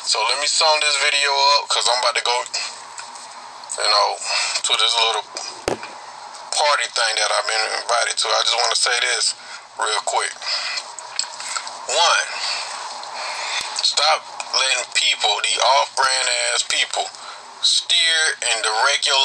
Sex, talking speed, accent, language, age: male, 135 wpm, American, English, 20-39